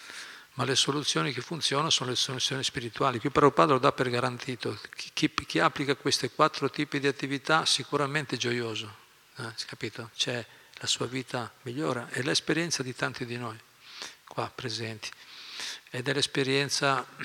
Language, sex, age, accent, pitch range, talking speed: Italian, male, 50-69, native, 120-140 Hz, 165 wpm